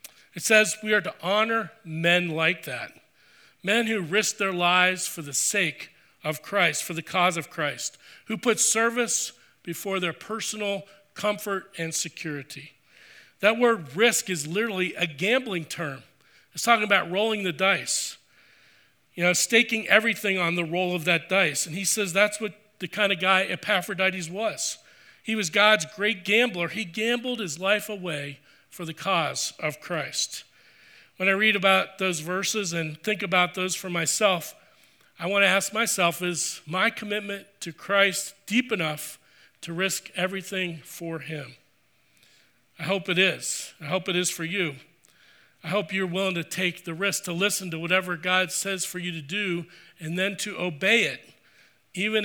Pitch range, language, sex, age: 170-205 Hz, English, male, 40-59